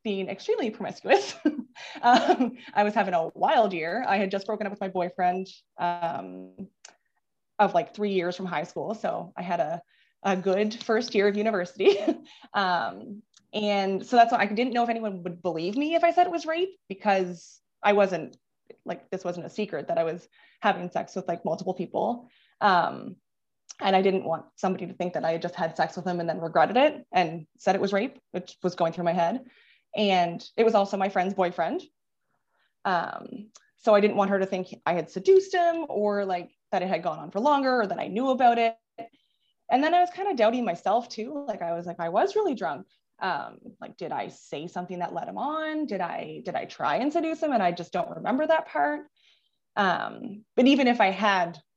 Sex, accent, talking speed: female, American, 215 wpm